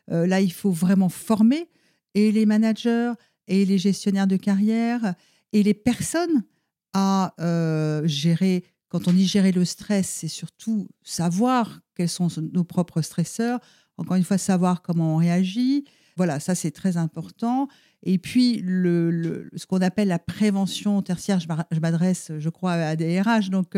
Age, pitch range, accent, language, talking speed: 50-69, 165-205 Hz, French, French, 160 wpm